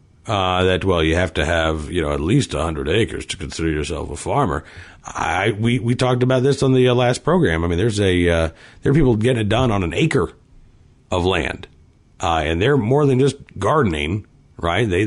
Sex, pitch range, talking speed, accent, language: male, 95-135 Hz, 215 wpm, American, English